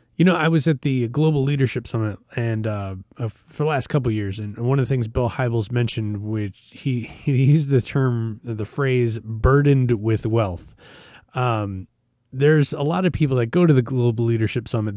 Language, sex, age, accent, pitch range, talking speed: English, male, 20-39, American, 110-145 Hz, 195 wpm